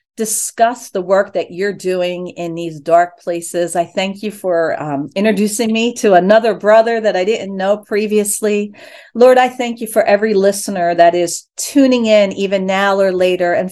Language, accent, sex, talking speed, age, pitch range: English, American, female, 180 wpm, 50-69, 190-250 Hz